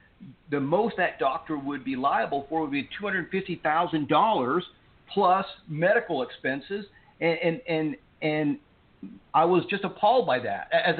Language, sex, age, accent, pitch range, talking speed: English, male, 50-69, American, 145-180 Hz, 160 wpm